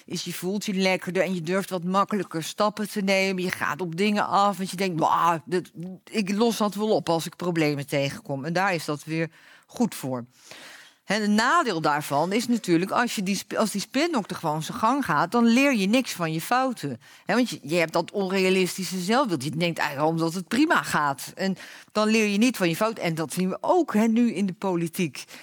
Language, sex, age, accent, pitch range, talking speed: Dutch, female, 40-59, Dutch, 170-235 Hz, 225 wpm